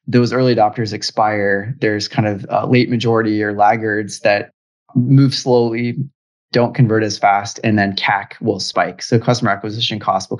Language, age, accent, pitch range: English, 20-39, American, 105-120 Hz